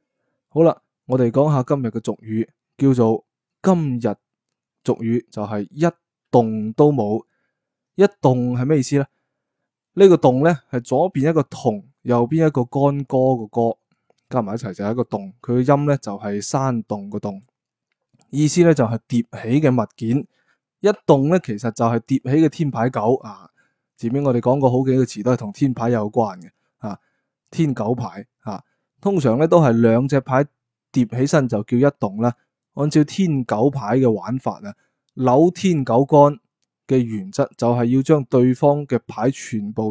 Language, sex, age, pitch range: Chinese, male, 20-39, 115-145 Hz